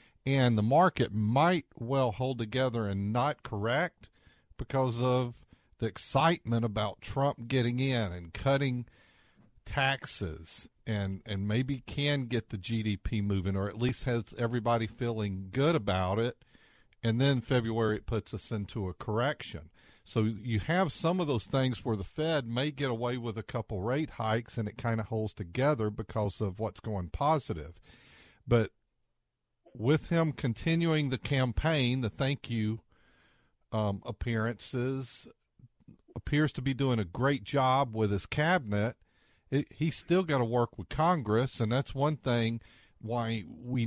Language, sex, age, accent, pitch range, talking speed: English, male, 50-69, American, 110-135 Hz, 150 wpm